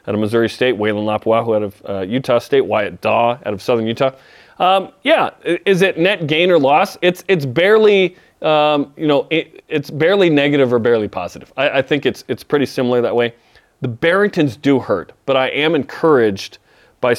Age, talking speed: 30-49, 195 wpm